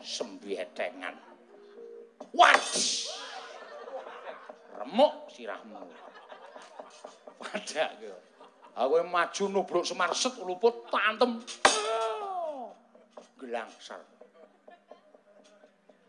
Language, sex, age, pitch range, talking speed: Indonesian, male, 60-79, 200-330 Hz, 50 wpm